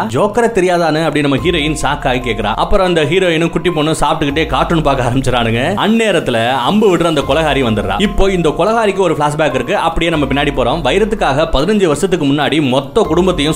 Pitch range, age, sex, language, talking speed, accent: 140-185 Hz, 30-49, male, Tamil, 165 wpm, native